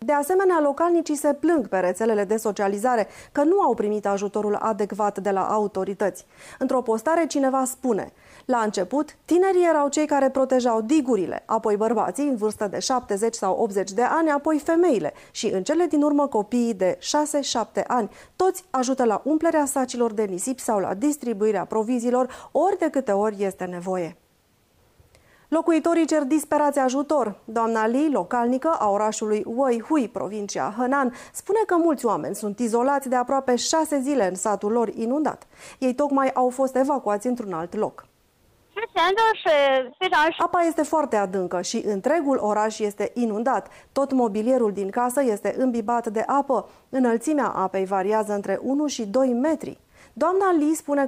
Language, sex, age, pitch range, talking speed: Romanian, female, 30-49, 210-290 Hz, 155 wpm